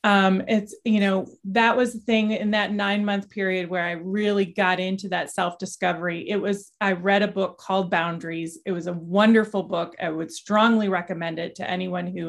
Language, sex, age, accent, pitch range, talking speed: English, female, 30-49, American, 175-225 Hz, 200 wpm